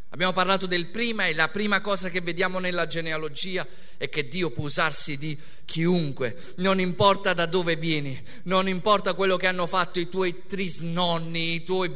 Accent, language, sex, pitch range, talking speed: native, Italian, male, 185-230 Hz, 175 wpm